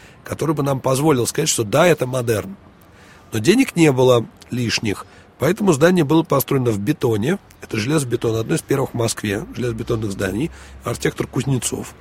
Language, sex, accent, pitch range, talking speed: Russian, male, native, 110-155 Hz, 155 wpm